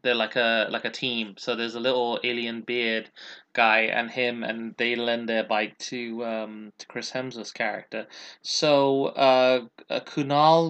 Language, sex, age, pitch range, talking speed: English, male, 20-39, 115-135 Hz, 170 wpm